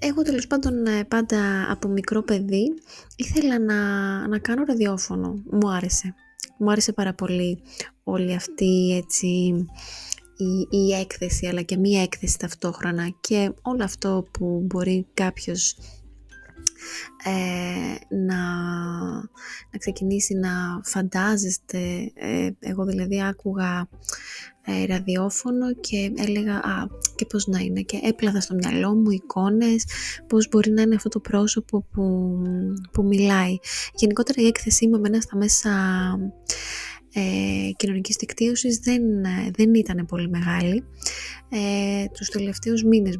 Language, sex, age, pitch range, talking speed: Greek, female, 20-39, 180-220 Hz, 115 wpm